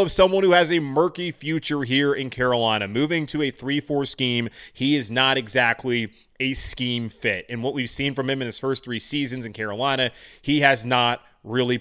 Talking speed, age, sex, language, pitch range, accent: 200 wpm, 30-49, male, English, 110-130 Hz, American